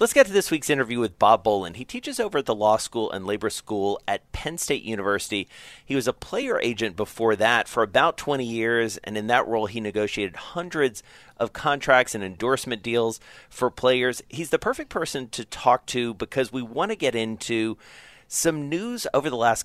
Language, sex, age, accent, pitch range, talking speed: English, male, 40-59, American, 105-130 Hz, 200 wpm